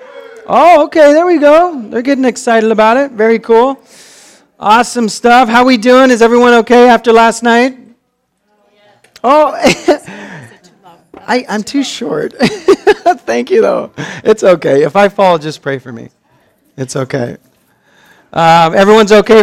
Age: 40-59